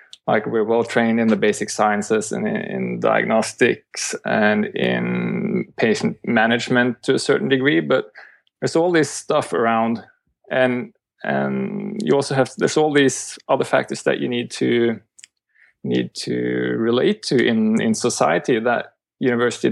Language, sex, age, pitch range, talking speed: English, male, 20-39, 105-155 Hz, 145 wpm